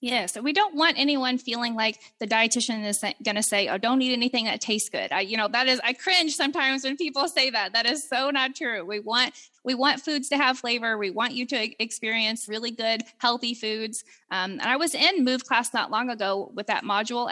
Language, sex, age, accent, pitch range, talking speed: English, female, 20-39, American, 215-260 Hz, 235 wpm